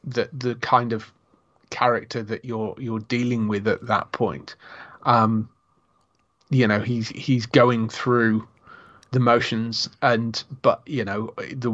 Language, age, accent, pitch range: English, 30-49, British, 110-130 Hz